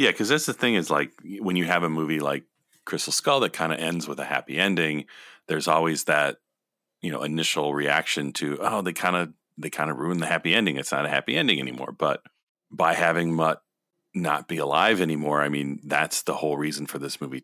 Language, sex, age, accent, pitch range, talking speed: English, male, 40-59, American, 75-95 Hz, 225 wpm